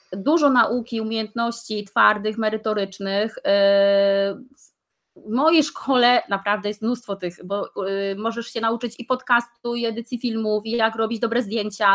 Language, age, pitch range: Polish, 20-39, 210-250 Hz